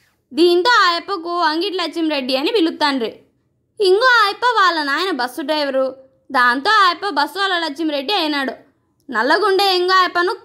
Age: 20-39